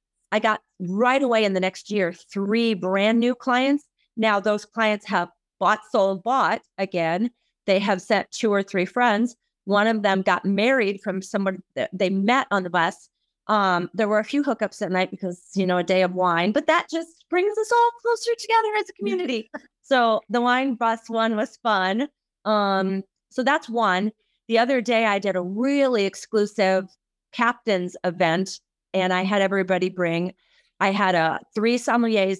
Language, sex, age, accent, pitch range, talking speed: English, female, 30-49, American, 185-230 Hz, 180 wpm